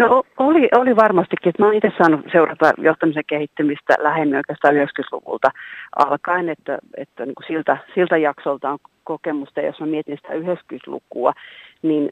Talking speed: 150 wpm